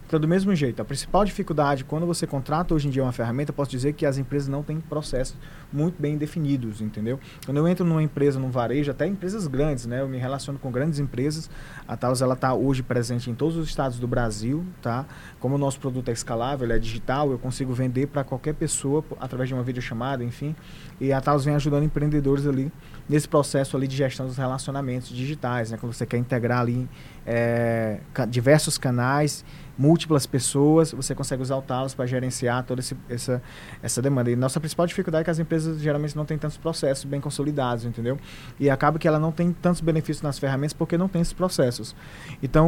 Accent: Brazilian